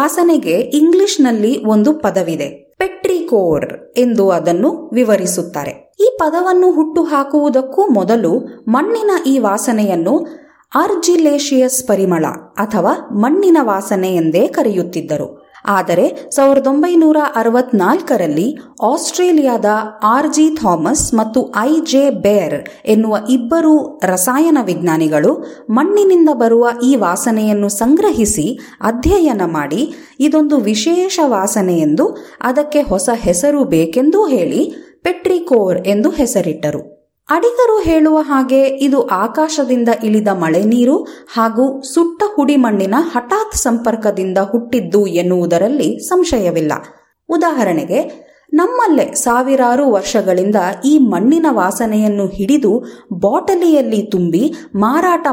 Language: Kannada